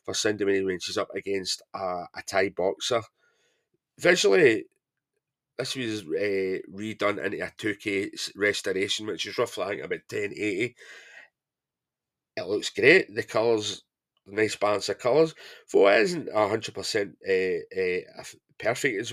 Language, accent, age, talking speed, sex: English, British, 30-49, 130 wpm, male